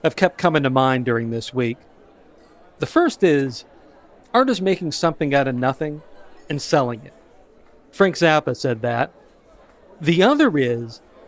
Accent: American